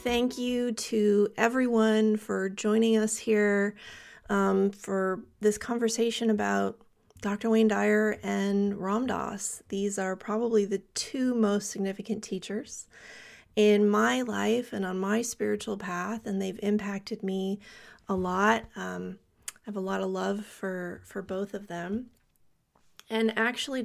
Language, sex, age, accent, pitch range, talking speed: English, female, 30-49, American, 200-230 Hz, 140 wpm